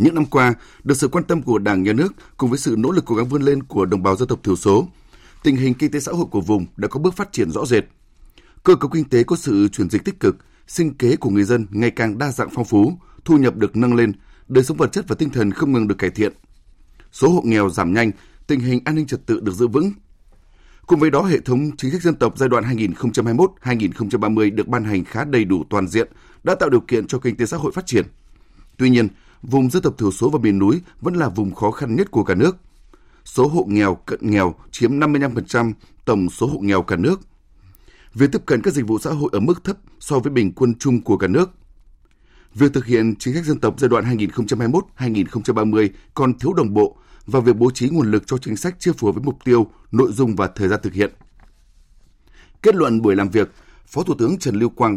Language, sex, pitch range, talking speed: Vietnamese, male, 105-140 Hz, 245 wpm